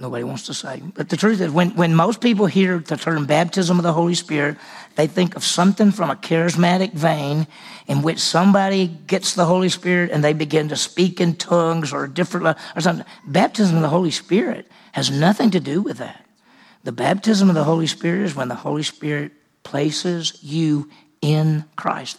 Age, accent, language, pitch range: 50-69, American, English, 155-195 Hz